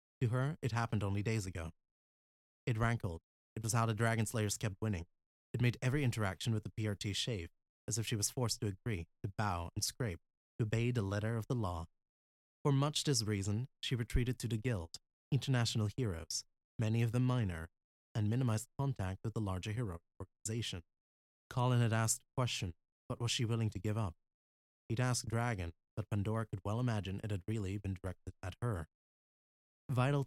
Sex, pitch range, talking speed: male, 95-125 Hz, 185 wpm